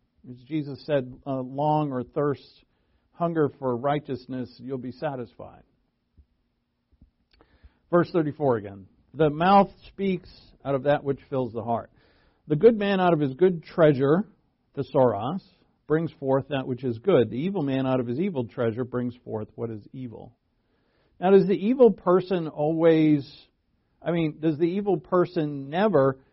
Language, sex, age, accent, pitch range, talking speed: English, male, 50-69, American, 120-155 Hz, 155 wpm